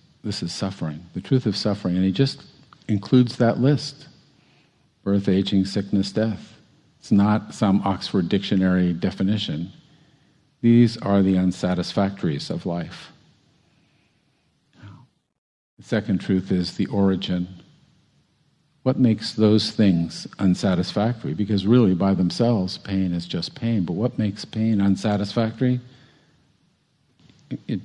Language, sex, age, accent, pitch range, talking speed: English, male, 50-69, American, 95-120 Hz, 115 wpm